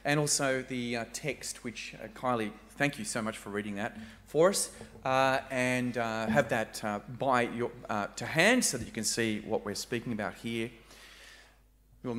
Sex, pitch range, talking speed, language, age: male, 125-175 Hz, 190 wpm, English, 30-49